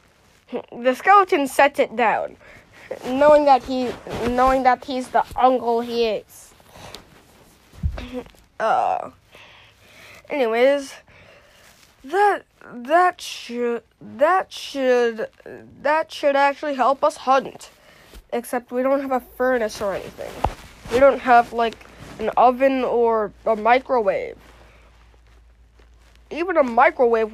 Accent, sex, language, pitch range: American, female, English, 215-275 Hz